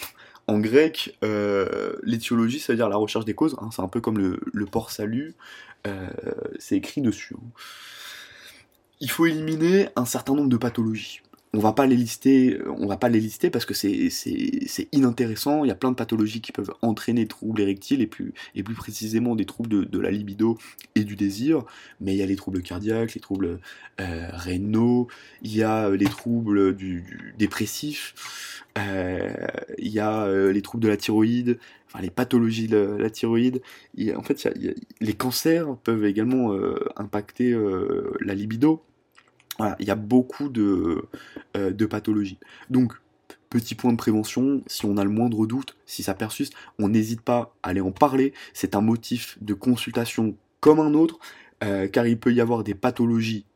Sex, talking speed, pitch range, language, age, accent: male, 195 wpm, 105-125 Hz, French, 20-39, French